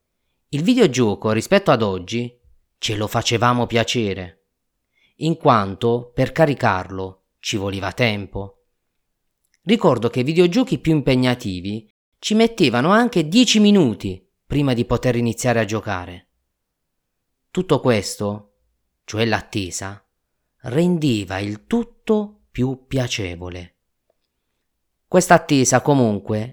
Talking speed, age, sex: 100 wpm, 30-49, male